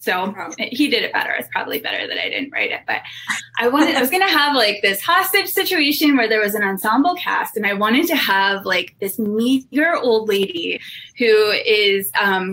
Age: 20-39